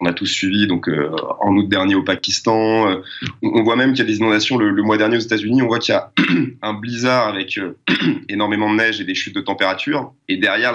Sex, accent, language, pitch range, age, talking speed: male, French, French, 105-135 Hz, 20-39, 250 wpm